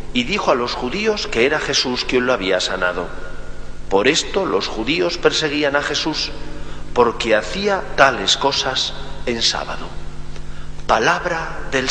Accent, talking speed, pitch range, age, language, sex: Spanish, 135 wpm, 105-145 Hz, 40-59, Spanish, male